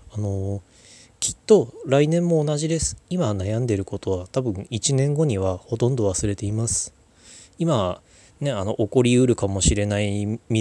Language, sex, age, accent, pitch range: Japanese, male, 20-39, native, 95-120 Hz